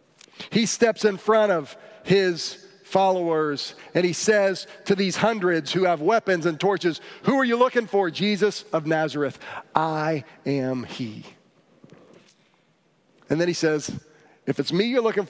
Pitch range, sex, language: 150-185 Hz, male, English